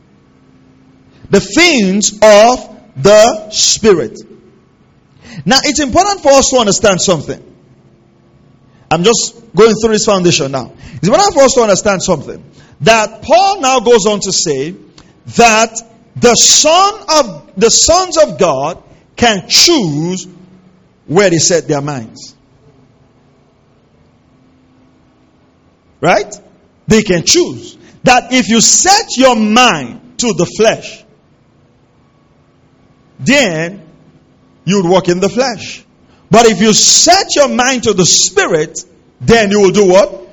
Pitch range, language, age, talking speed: 150-230 Hz, English, 50-69, 125 wpm